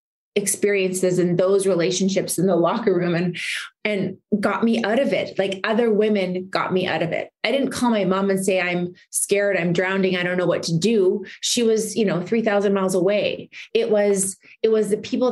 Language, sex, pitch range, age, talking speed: English, female, 185-215 Hz, 20-39, 210 wpm